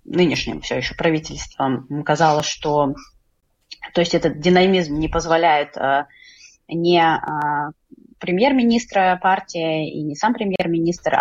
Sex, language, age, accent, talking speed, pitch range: female, Russian, 20-39, native, 100 wpm, 150-175 Hz